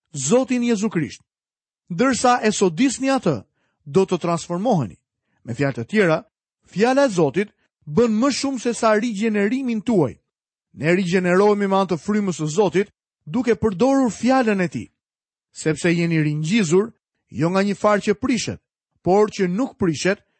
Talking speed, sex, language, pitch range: 125 wpm, male, Dutch, 170-230 Hz